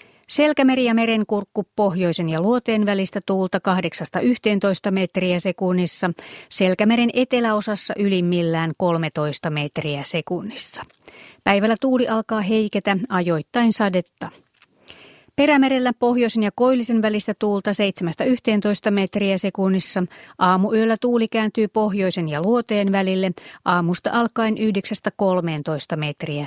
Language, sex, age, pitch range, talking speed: Finnish, female, 30-49, 180-225 Hz, 95 wpm